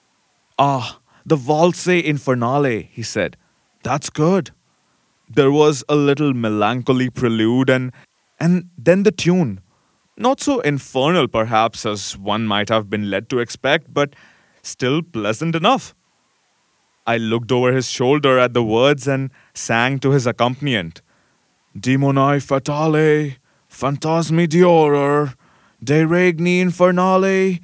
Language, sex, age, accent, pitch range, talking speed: English, male, 30-49, Indian, 120-155 Hz, 115 wpm